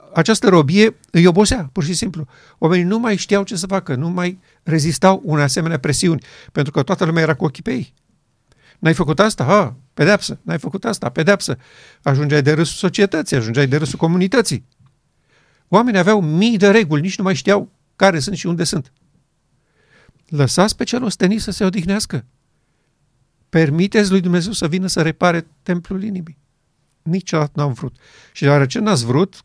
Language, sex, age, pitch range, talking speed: Romanian, male, 50-69, 145-185 Hz, 170 wpm